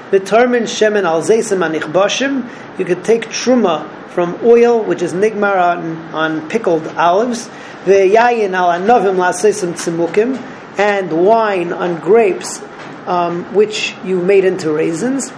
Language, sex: English, male